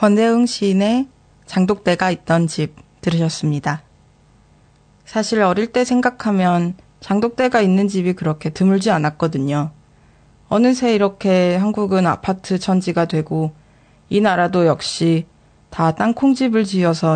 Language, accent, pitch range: Korean, native, 160-205 Hz